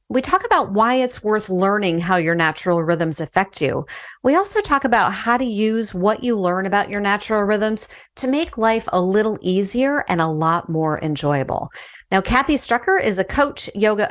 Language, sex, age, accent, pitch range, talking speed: English, female, 40-59, American, 175-230 Hz, 190 wpm